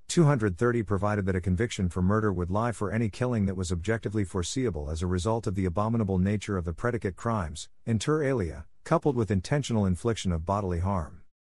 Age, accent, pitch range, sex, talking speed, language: 50-69, American, 90-115 Hz, male, 190 wpm, English